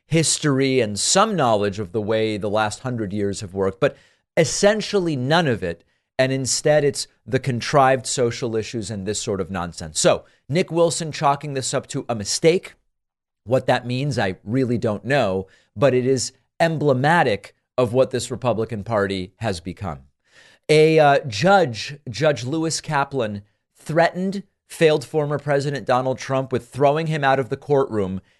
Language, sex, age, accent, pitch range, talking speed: English, male, 40-59, American, 115-150 Hz, 160 wpm